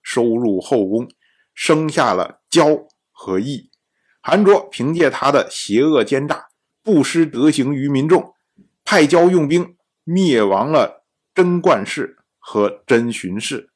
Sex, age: male, 50-69